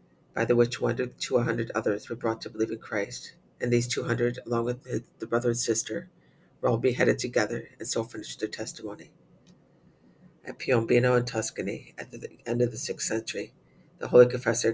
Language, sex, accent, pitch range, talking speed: English, female, American, 115-125 Hz, 200 wpm